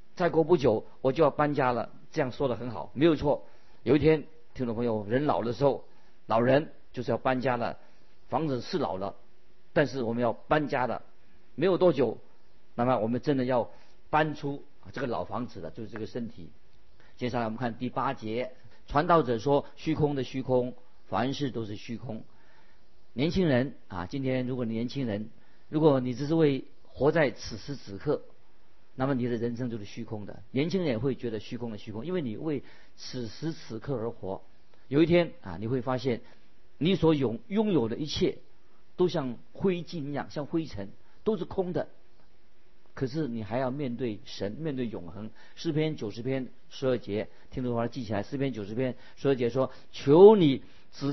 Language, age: Chinese, 50-69